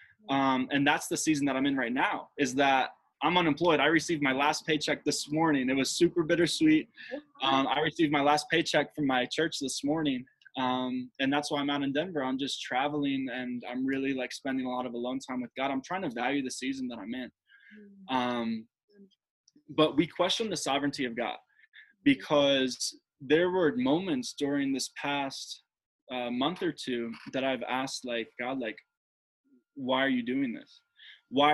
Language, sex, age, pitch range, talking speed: English, male, 20-39, 130-165 Hz, 190 wpm